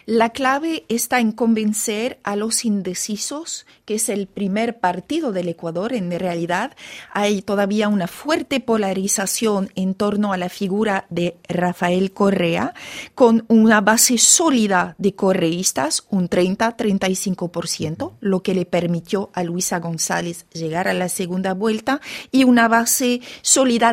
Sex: female